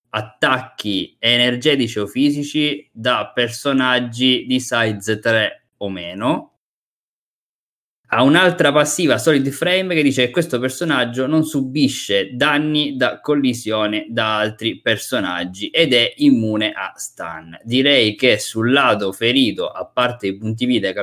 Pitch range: 105-130 Hz